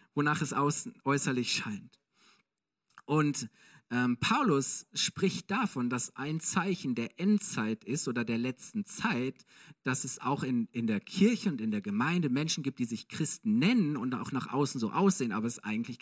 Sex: male